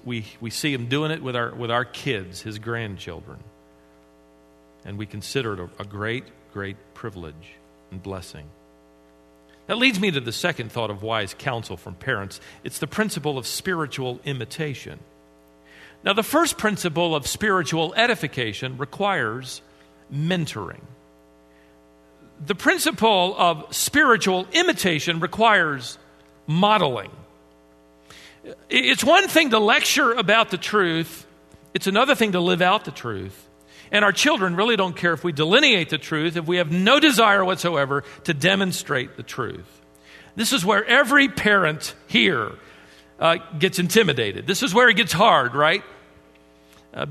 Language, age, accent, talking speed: English, 50-69, American, 145 wpm